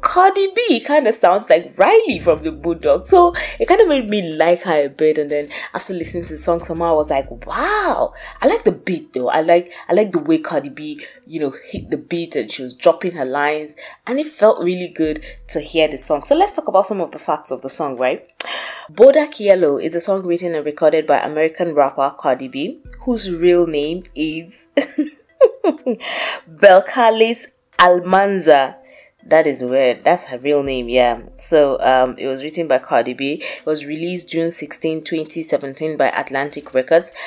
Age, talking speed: 20-39, 195 wpm